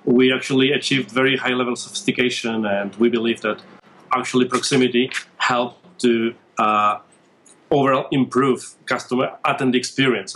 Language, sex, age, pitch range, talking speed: English, male, 30-49, 120-130 Hz, 120 wpm